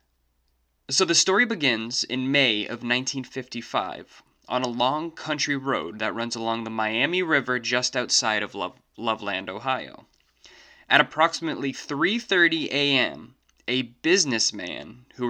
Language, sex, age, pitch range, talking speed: English, male, 20-39, 110-145 Hz, 125 wpm